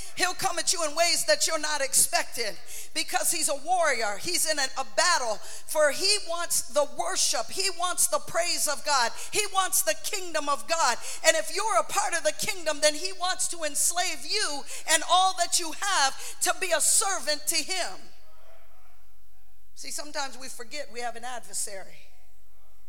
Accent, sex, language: American, female, English